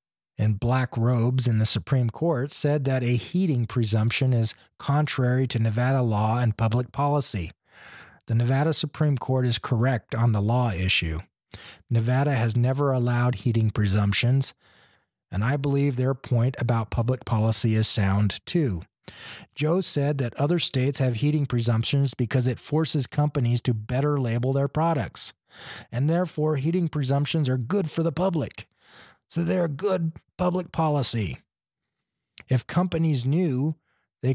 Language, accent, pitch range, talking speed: English, American, 115-150 Hz, 145 wpm